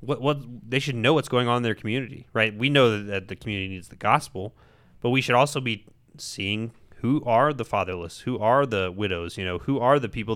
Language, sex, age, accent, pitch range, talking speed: English, male, 20-39, American, 100-125 Hz, 230 wpm